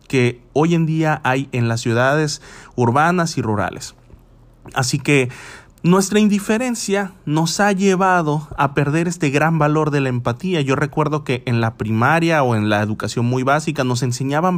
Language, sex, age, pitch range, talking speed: Spanish, male, 30-49, 125-170 Hz, 165 wpm